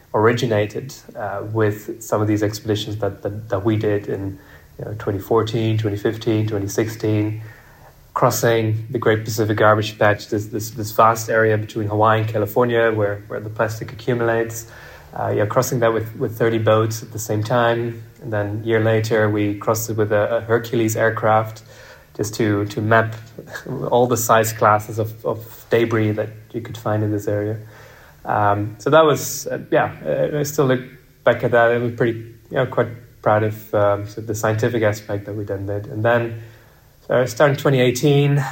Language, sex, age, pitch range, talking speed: English, male, 20-39, 105-120 Hz, 180 wpm